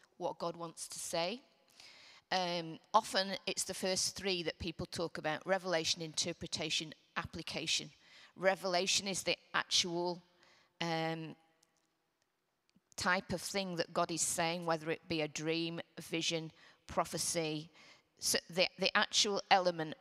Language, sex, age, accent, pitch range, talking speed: English, female, 40-59, British, 165-180 Hz, 130 wpm